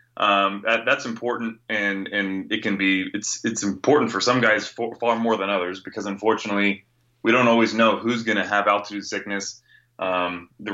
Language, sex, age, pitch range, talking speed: English, male, 20-39, 100-115 Hz, 190 wpm